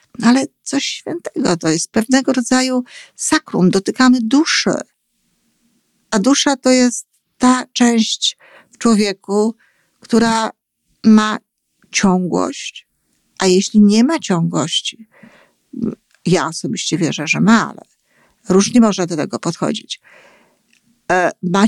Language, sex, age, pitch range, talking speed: Polish, female, 50-69, 180-230 Hz, 105 wpm